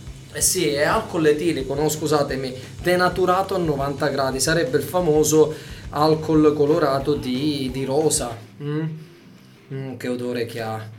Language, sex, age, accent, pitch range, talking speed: Italian, male, 20-39, native, 135-155 Hz, 135 wpm